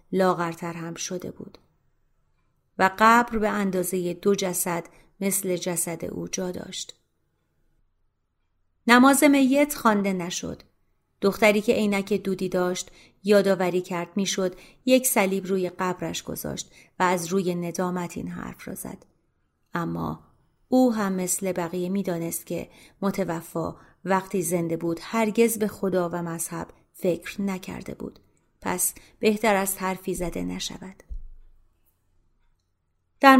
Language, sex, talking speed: Persian, female, 120 wpm